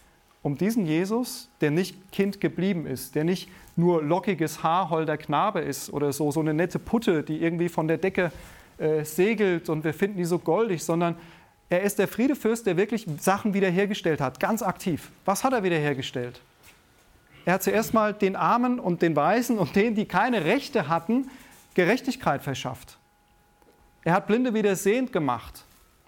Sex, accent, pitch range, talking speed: male, German, 140-195 Hz, 170 wpm